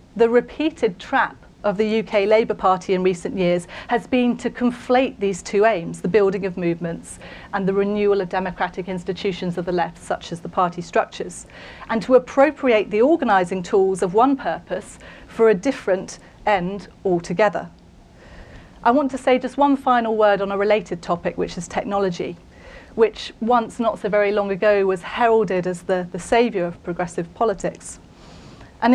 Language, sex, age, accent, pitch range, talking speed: English, female, 40-59, British, 195-250 Hz, 170 wpm